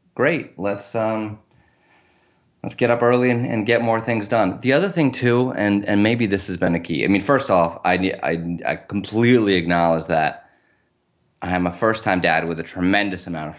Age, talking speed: 30-49, 205 wpm